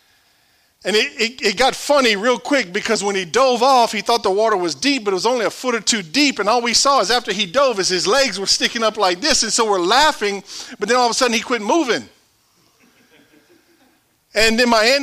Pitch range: 180-245 Hz